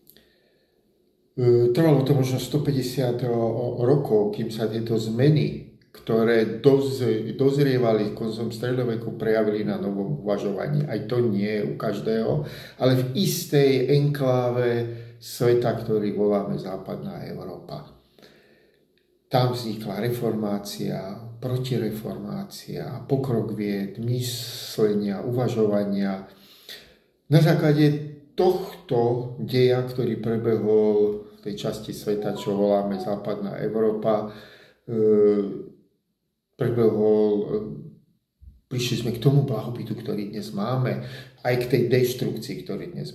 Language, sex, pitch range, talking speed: Slovak, male, 110-130 Hz, 95 wpm